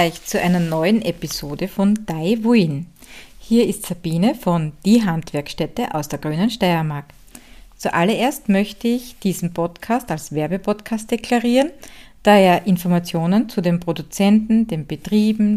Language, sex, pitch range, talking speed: German, female, 175-230 Hz, 125 wpm